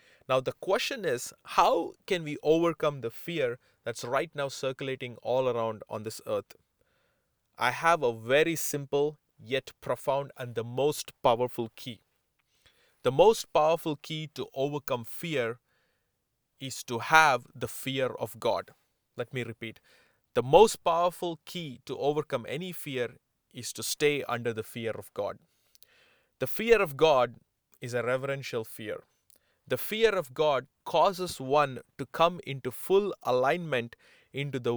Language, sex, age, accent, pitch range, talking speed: English, male, 30-49, Indian, 120-155 Hz, 145 wpm